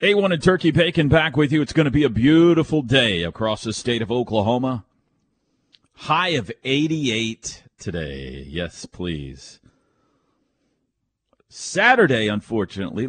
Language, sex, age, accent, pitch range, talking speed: English, male, 40-59, American, 100-155 Hz, 125 wpm